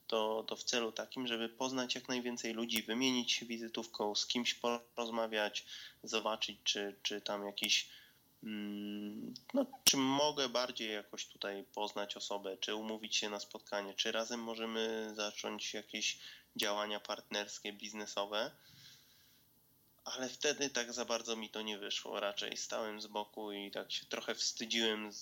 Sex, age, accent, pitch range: male, 20-39, native, 105-120 Hz